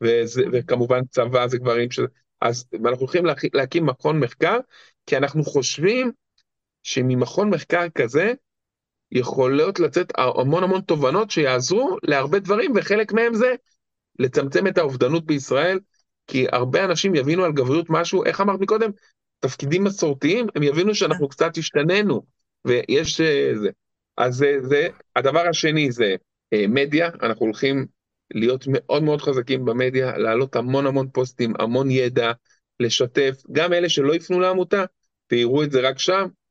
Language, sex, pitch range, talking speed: Hebrew, male, 130-180 Hz, 135 wpm